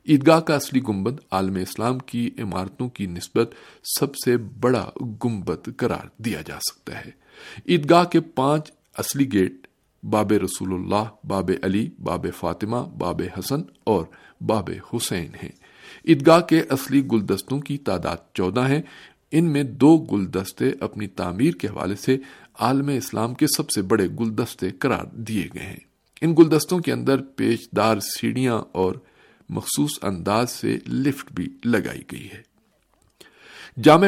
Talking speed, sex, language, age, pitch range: 145 wpm, male, Urdu, 50-69, 100-140 Hz